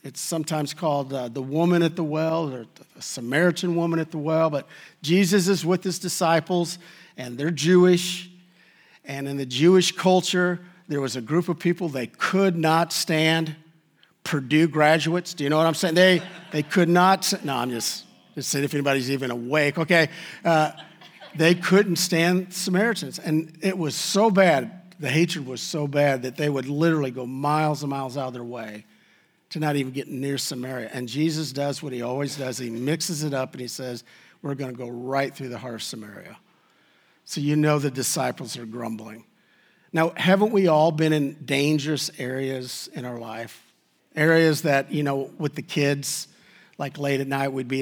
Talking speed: 185 wpm